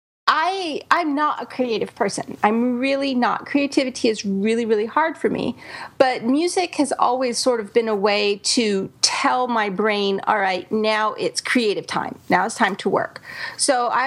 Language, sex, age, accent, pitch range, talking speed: English, female, 30-49, American, 220-280 Hz, 175 wpm